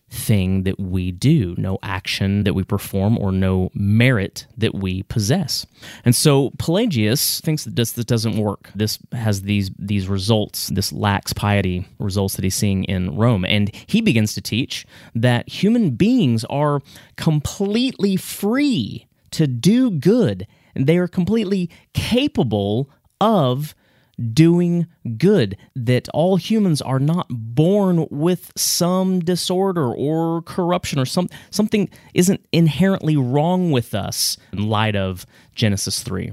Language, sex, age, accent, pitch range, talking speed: English, male, 30-49, American, 105-160 Hz, 140 wpm